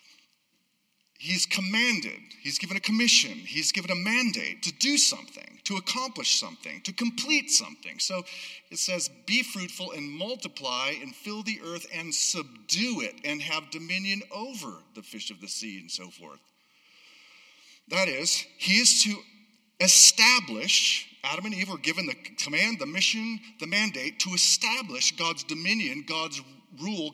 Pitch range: 170-230 Hz